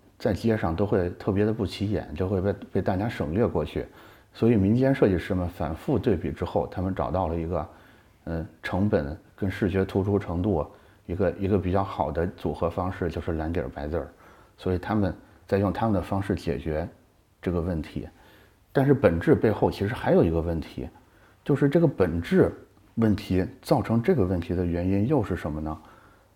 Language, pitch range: Chinese, 85-105 Hz